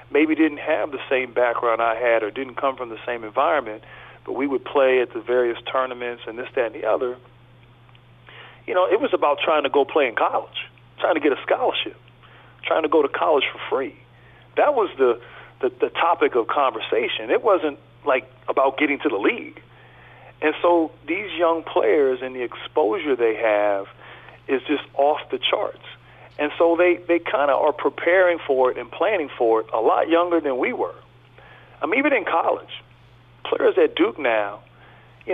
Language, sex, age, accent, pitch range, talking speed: English, male, 40-59, American, 125-180 Hz, 190 wpm